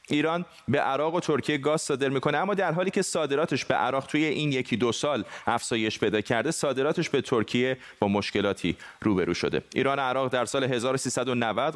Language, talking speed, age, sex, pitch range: Persian, 185 wpm, 30-49, male, 120-150 Hz